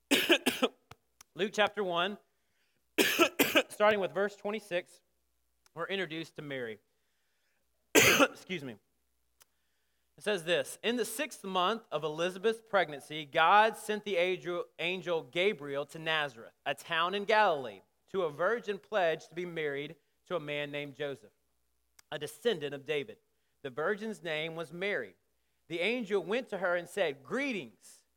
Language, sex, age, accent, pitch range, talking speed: English, male, 30-49, American, 155-215 Hz, 135 wpm